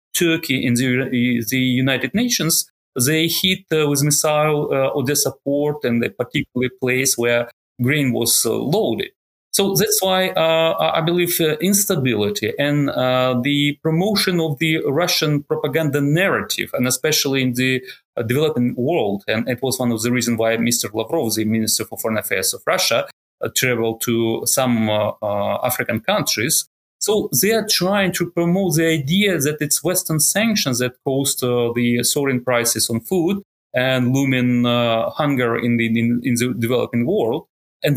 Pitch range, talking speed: 120-165 Hz, 165 wpm